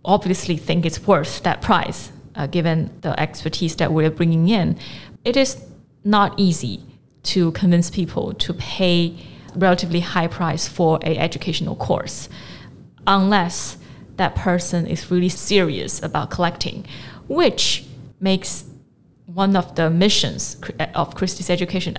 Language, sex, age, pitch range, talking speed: English, female, 20-39, 160-190 Hz, 130 wpm